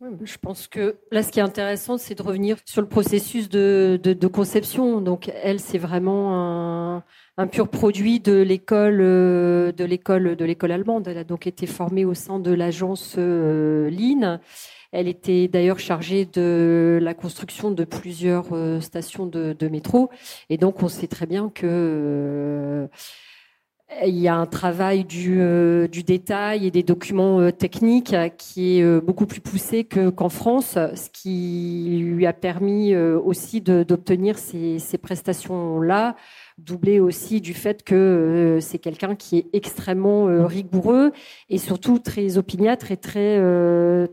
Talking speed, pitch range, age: 160 wpm, 175-200 Hz, 40-59